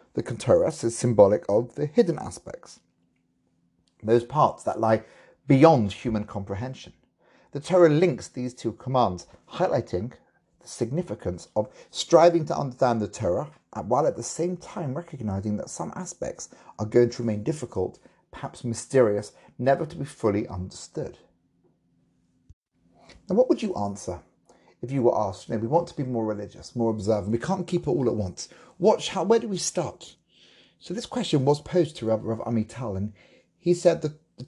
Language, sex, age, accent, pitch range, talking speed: English, male, 40-59, British, 105-160 Hz, 165 wpm